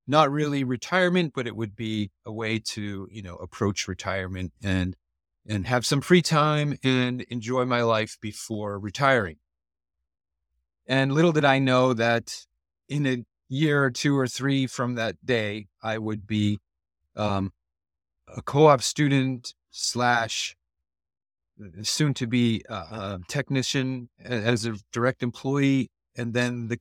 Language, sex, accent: English, male, American